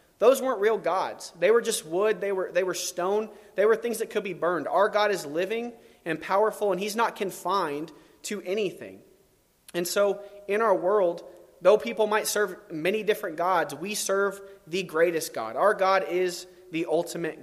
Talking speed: 185 wpm